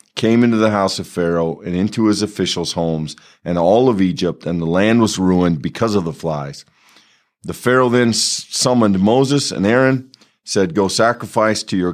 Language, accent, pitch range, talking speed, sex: English, American, 85-105 Hz, 180 wpm, male